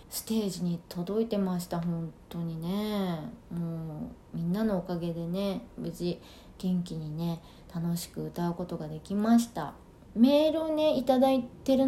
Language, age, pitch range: Japanese, 20-39, 190-245 Hz